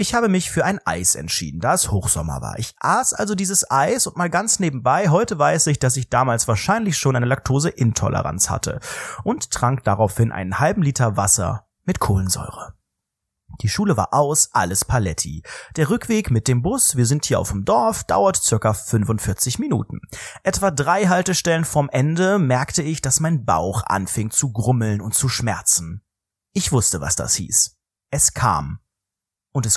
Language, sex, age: German, male, 30-49